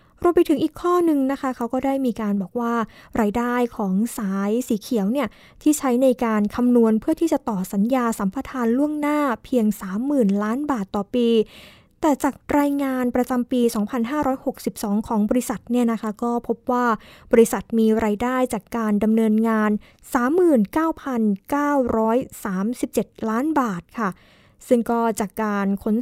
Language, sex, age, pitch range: Thai, female, 20-39, 215-270 Hz